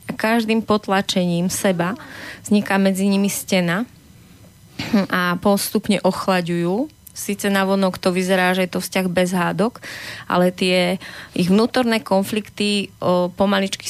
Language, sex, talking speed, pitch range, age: Slovak, female, 120 wpm, 185-210 Hz, 20-39